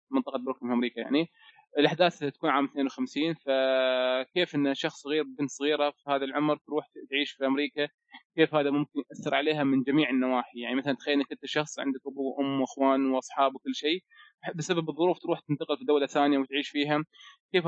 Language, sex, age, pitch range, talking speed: Arabic, male, 20-39, 140-165 Hz, 180 wpm